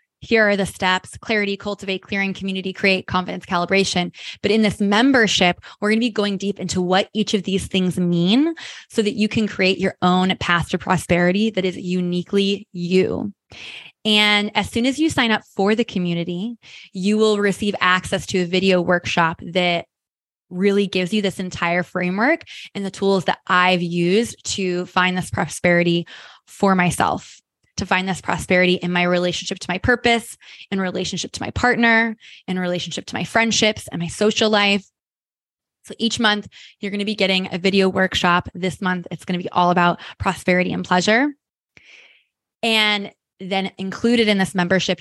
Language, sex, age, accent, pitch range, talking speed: English, female, 20-39, American, 180-210 Hz, 170 wpm